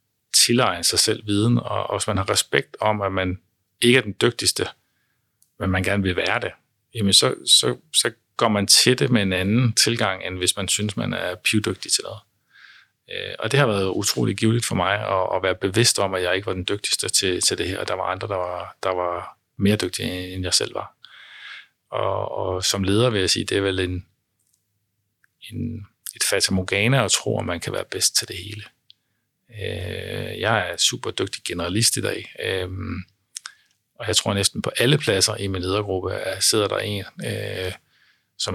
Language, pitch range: Danish, 95-110 Hz